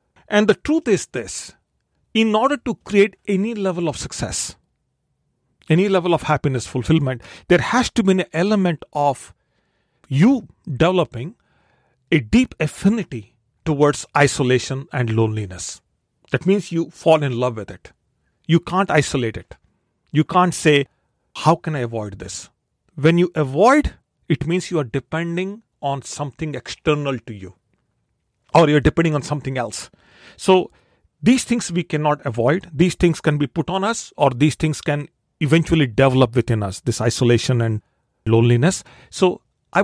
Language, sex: English, male